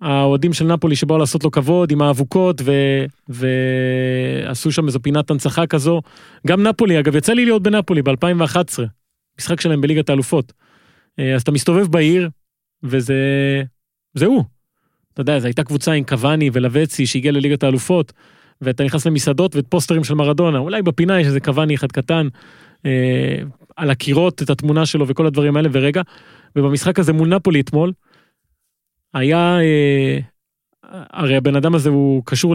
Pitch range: 135-175 Hz